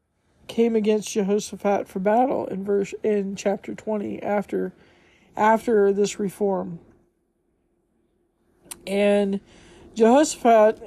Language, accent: English, American